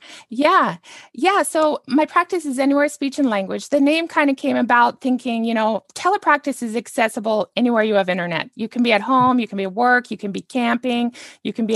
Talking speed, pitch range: 220 wpm, 195-250 Hz